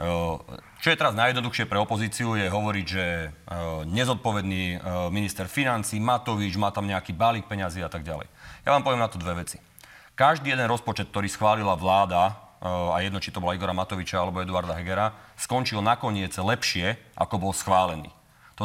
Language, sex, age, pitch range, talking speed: Slovak, male, 30-49, 95-120 Hz, 165 wpm